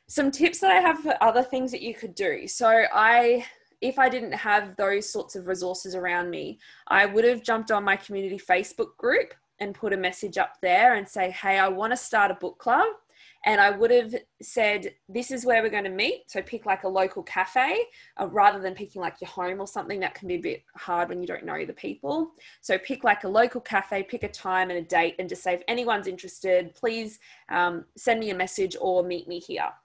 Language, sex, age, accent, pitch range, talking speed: English, female, 20-39, Australian, 185-245 Hz, 235 wpm